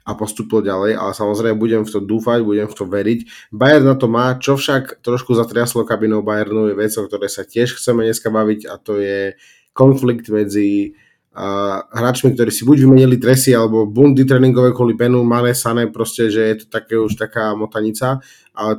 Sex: male